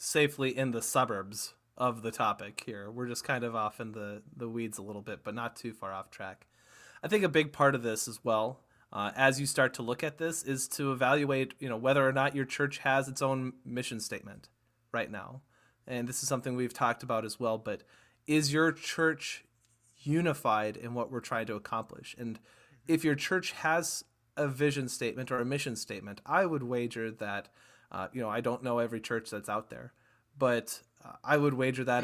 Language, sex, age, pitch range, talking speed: English, male, 30-49, 115-140 Hz, 210 wpm